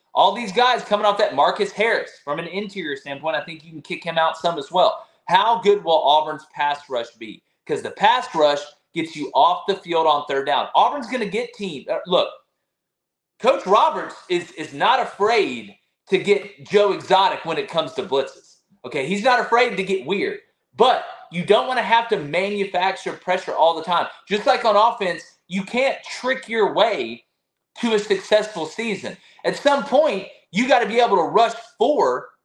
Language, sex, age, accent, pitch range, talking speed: English, male, 30-49, American, 175-235 Hz, 195 wpm